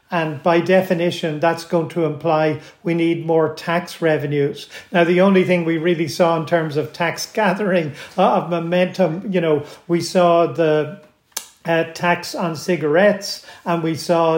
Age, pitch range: 50-69, 160-185 Hz